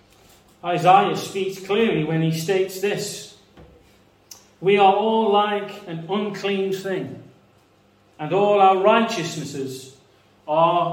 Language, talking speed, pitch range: English, 105 wpm, 130-175 Hz